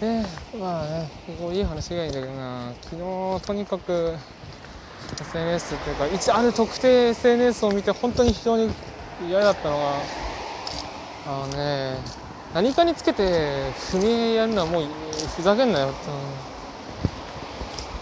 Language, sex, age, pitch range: Japanese, male, 20-39, 140-220 Hz